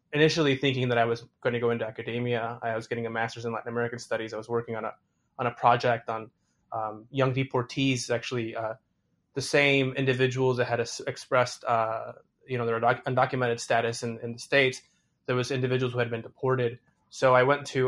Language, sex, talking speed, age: English, male, 200 wpm, 20-39